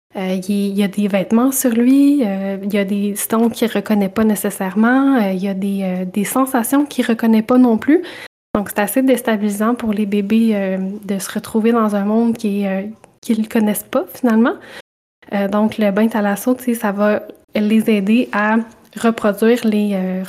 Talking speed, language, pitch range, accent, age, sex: 200 wpm, French, 200-230 Hz, Canadian, 20-39, female